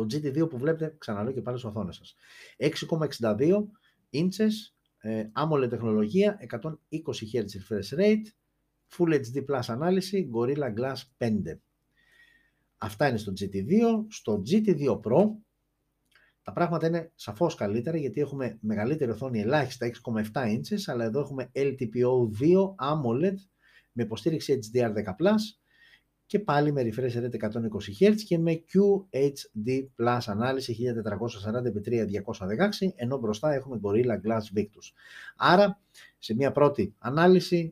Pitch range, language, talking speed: 110-170 Hz, Greek, 115 wpm